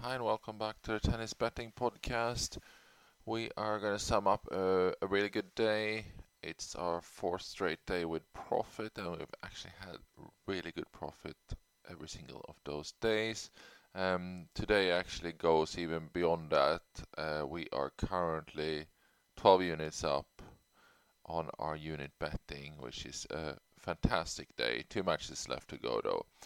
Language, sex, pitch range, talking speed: English, male, 80-100 Hz, 155 wpm